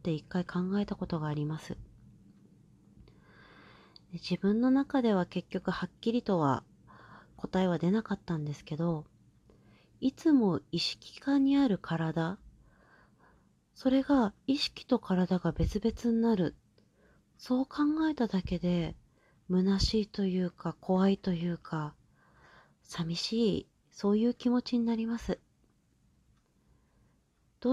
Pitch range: 170-230 Hz